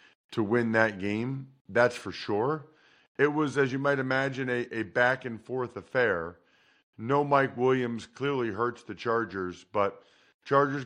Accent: American